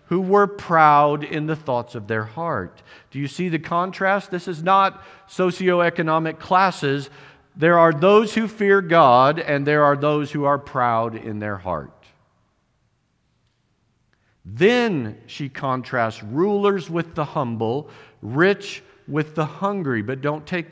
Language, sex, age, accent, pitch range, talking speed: English, male, 50-69, American, 135-185 Hz, 140 wpm